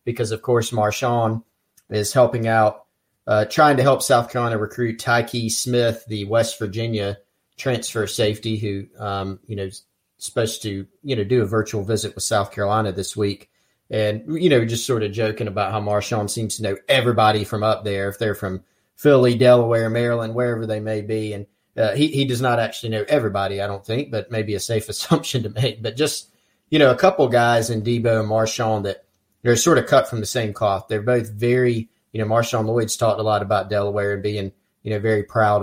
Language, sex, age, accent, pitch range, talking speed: English, male, 30-49, American, 105-120 Hz, 205 wpm